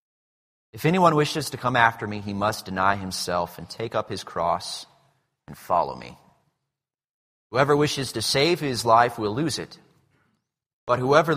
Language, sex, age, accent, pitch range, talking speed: English, male, 30-49, American, 105-150 Hz, 160 wpm